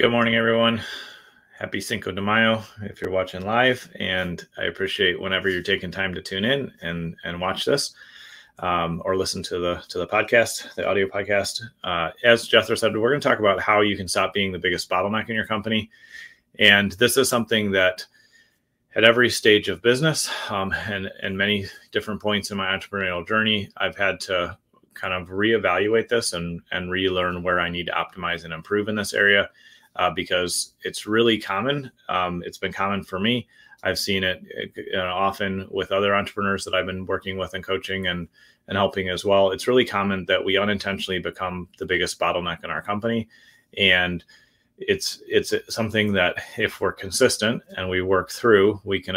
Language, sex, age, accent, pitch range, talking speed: English, male, 30-49, American, 90-110 Hz, 185 wpm